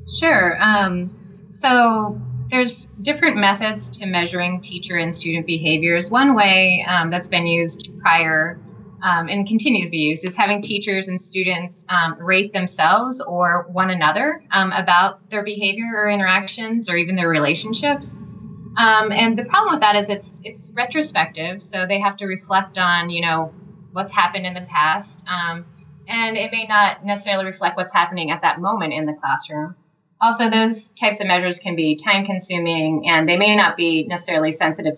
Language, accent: English, American